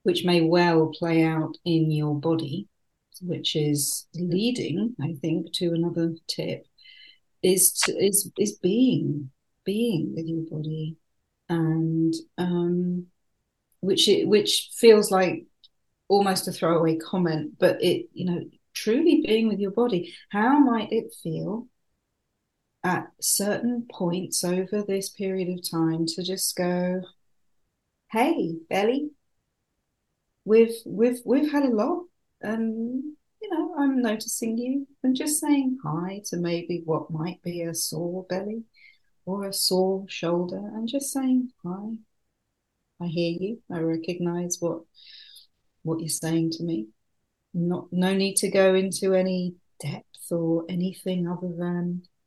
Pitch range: 170-220 Hz